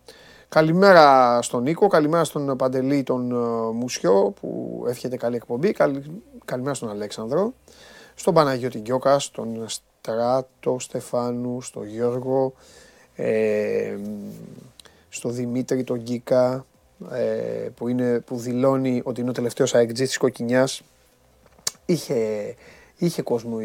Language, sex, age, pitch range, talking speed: Greek, male, 30-49, 110-150 Hz, 110 wpm